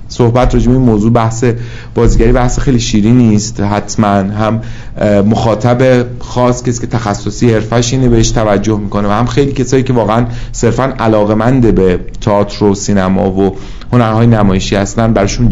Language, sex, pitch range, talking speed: Persian, male, 105-120 Hz, 140 wpm